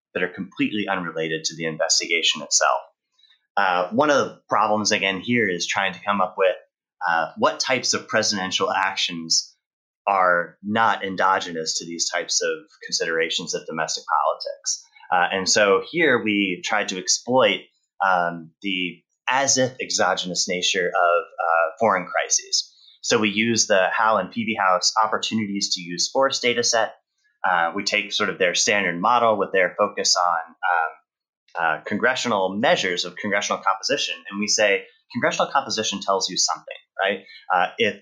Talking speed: 160 wpm